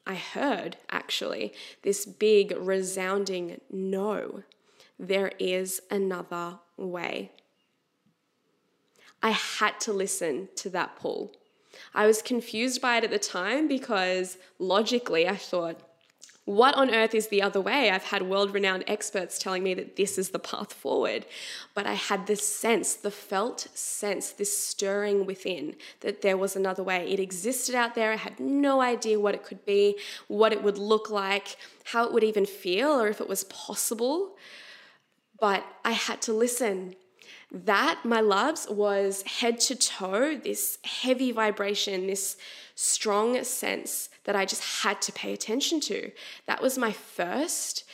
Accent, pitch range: Australian, 190-230 Hz